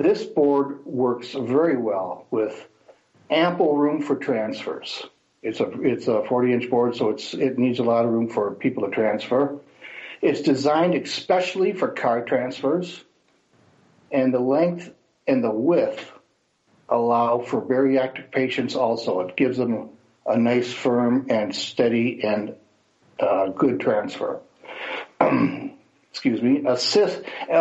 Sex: male